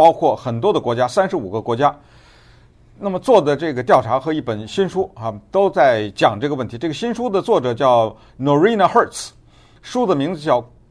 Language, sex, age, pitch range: Chinese, male, 50-69, 115-160 Hz